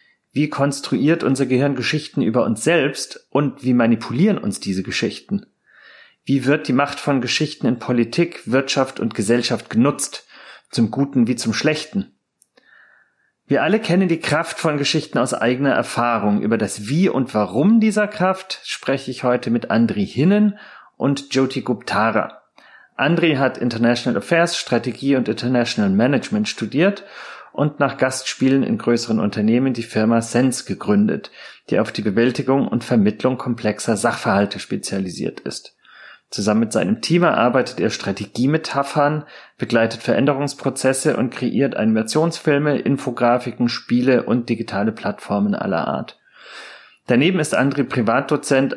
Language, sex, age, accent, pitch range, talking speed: German, male, 30-49, German, 115-155 Hz, 135 wpm